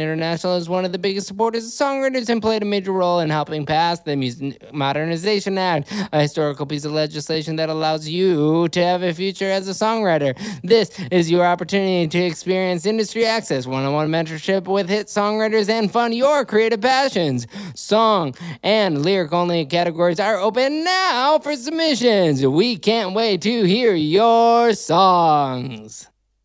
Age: 20-39